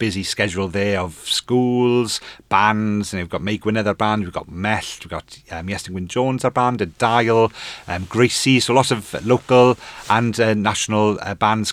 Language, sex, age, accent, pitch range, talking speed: English, male, 30-49, British, 95-120 Hz, 180 wpm